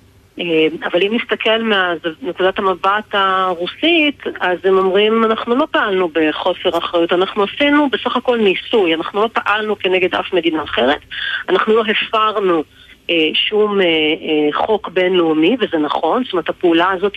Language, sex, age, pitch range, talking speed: Hebrew, female, 30-49, 180-225 Hz, 145 wpm